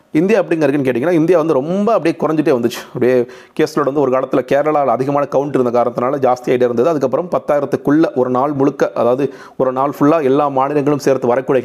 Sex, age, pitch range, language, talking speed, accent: male, 30-49, 120-145 Hz, Tamil, 170 wpm, native